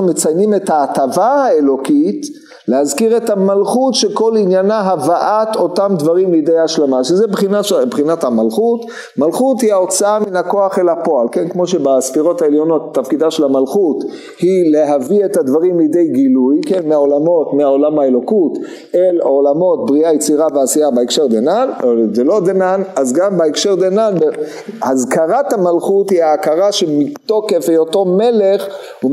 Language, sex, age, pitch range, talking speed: Hebrew, male, 50-69, 160-220 Hz, 115 wpm